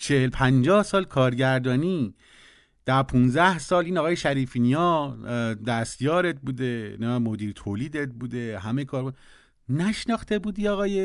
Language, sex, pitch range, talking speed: Persian, male, 130-205 Hz, 110 wpm